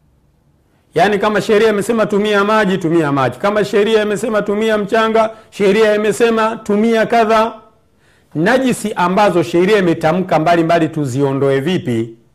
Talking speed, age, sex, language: 120 wpm, 50-69, male, Swahili